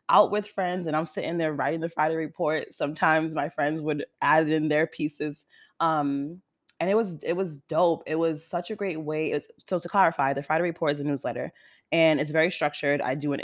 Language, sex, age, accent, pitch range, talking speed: English, female, 20-39, American, 145-175 Hz, 225 wpm